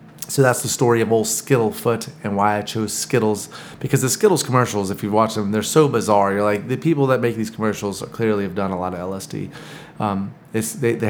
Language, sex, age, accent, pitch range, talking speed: English, male, 30-49, American, 105-120 Hz, 240 wpm